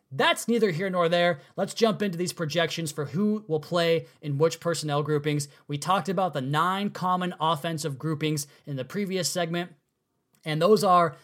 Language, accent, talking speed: English, American, 175 wpm